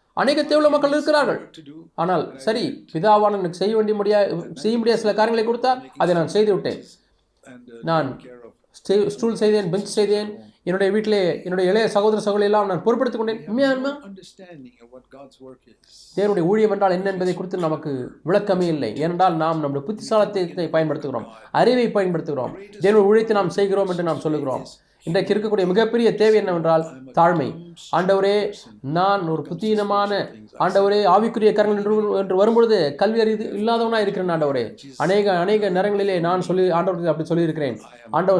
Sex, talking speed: male, 125 wpm